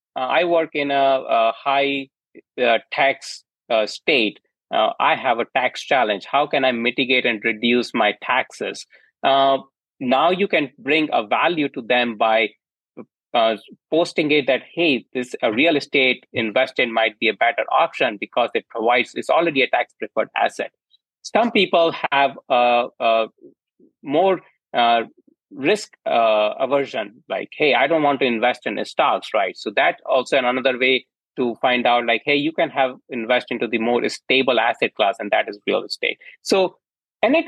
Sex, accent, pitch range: male, Indian, 125-150 Hz